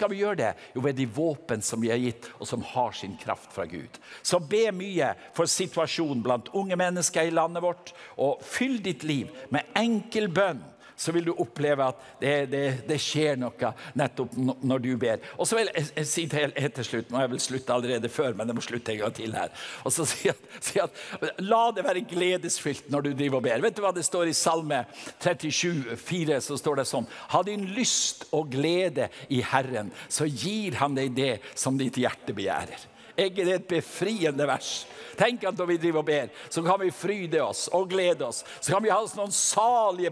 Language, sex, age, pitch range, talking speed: English, male, 60-79, 135-180 Hz, 200 wpm